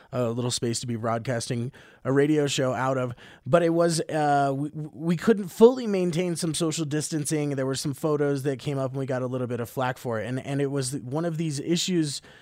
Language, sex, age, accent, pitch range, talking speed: English, male, 20-39, American, 125-155 Hz, 230 wpm